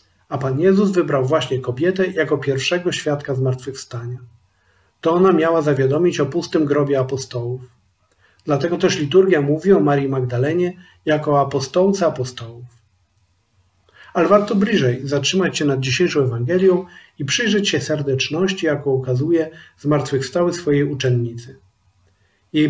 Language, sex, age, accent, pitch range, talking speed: Polish, male, 40-59, native, 125-170 Hz, 120 wpm